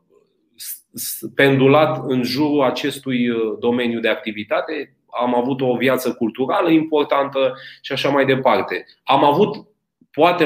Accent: native